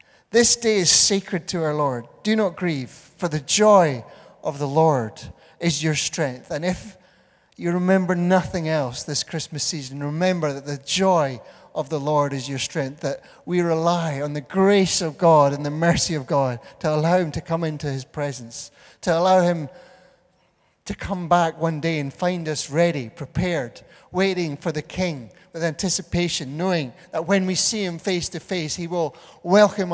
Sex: male